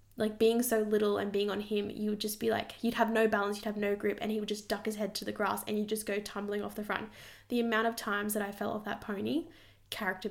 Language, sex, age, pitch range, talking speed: English, female, 10-29, 205-225 Hz, 295 wpm